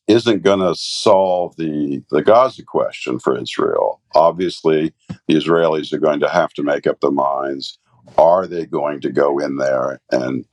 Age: 50-69